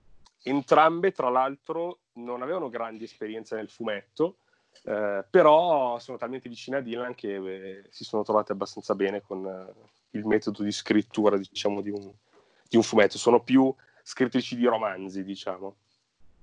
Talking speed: 150 wpm